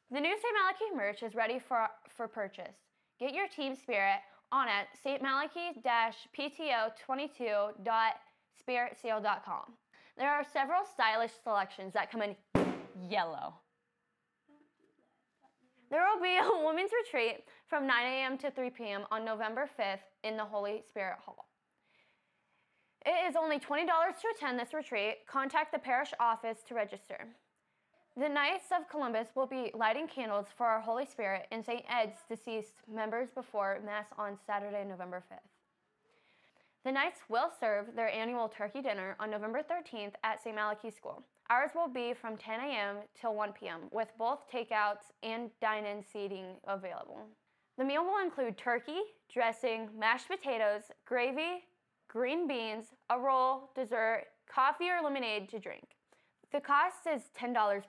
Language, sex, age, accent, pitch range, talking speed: English, female, 10-29, American, 215-290 Hz, 140 wpm